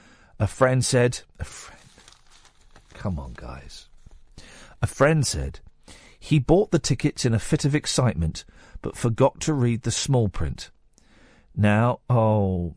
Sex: male